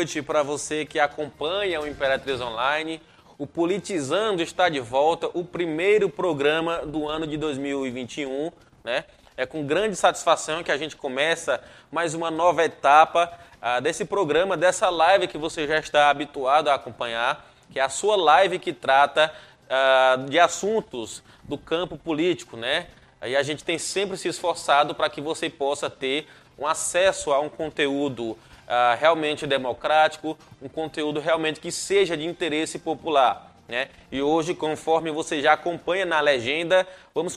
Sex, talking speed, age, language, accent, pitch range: male, 155 wpm, 20-39, Portuguese, Brazilian, 145-175 Hz